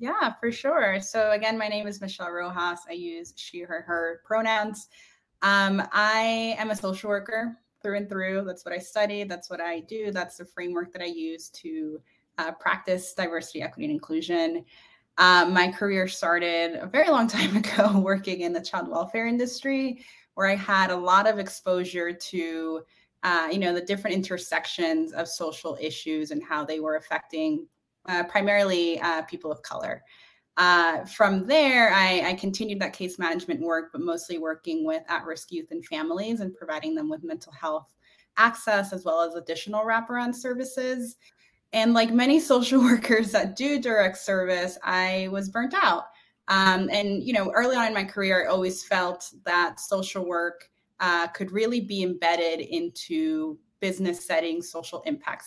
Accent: American